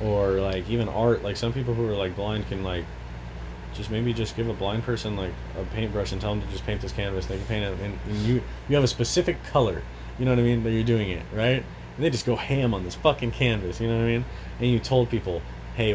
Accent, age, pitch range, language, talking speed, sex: American, 20-39, 95-120 Hz, English, 265 wpm, male